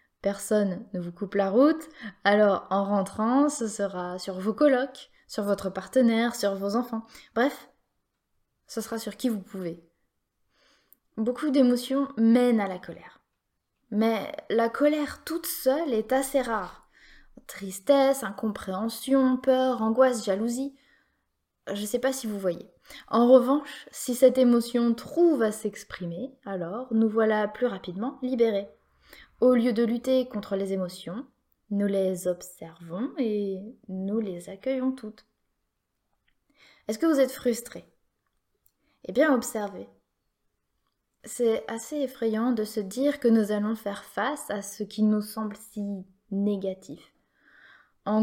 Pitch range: 205-255 Hz